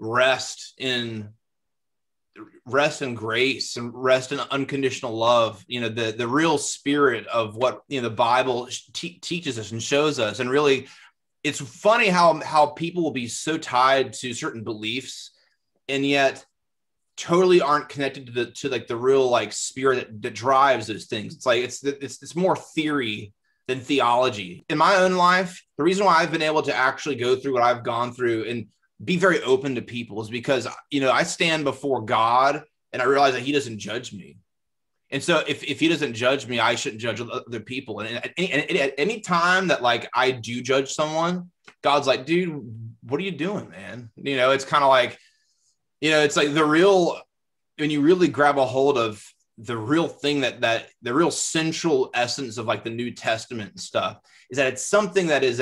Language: English